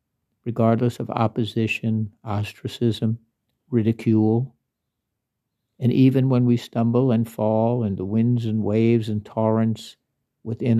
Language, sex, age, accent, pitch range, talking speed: English, male, 60-79, American, 105-125 Hz, 110 wpm